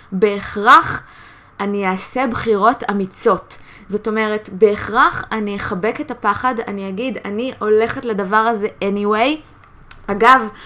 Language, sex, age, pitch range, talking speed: Hebrew, female, 20-39, 205-260 Hz, 115 wpm